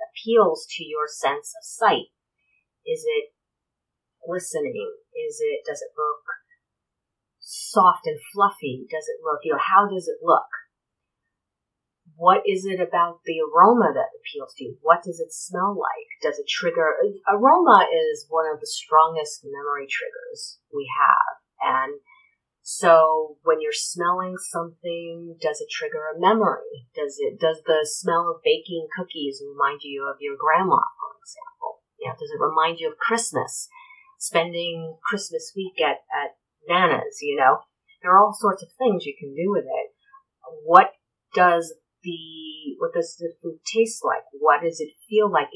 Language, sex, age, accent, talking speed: English, female, 30-49, American, 160 wpm